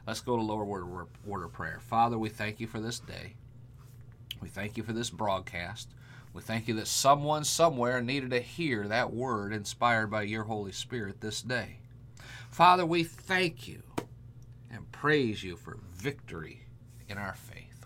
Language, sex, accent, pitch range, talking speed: English, male, American, 105-125 Hz, 165 wpm